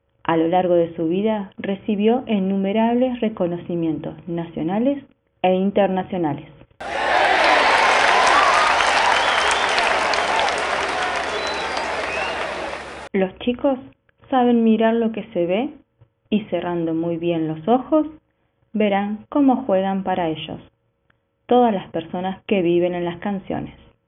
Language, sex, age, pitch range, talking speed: Spanish, female, 20-39, 170-225 Hz, 95 wpm